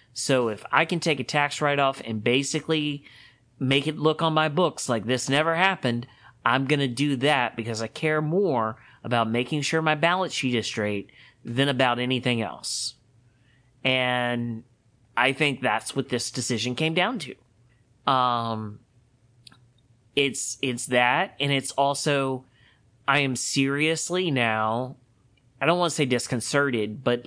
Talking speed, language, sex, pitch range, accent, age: 150 wpm, English, male, 120-145 Hz, American, 30-49